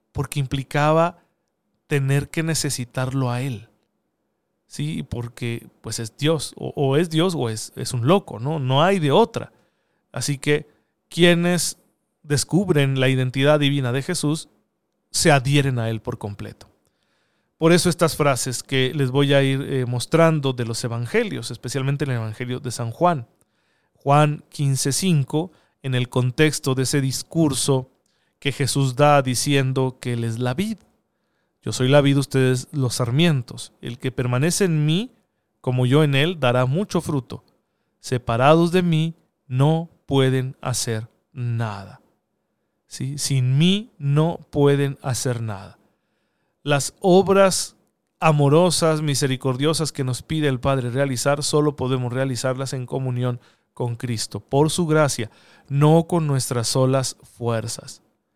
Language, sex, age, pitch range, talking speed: Spanish, male, 40-59, 125-155 Hz, 140 wpm